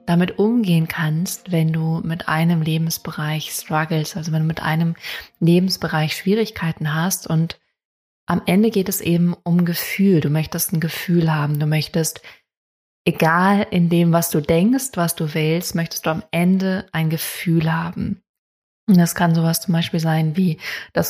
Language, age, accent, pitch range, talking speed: German, 20-39, German, 160-185 Hz, 160 wpm